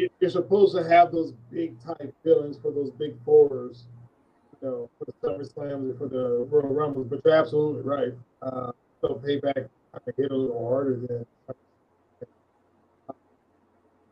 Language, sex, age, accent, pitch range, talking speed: English, male, 20-39, American, 125-155 Hz, 160 wpm